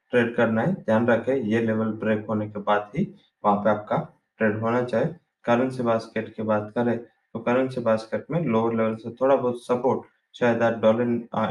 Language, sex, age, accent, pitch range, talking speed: English, male, 20-39, Indian, 110-120 Hz, 195 wpm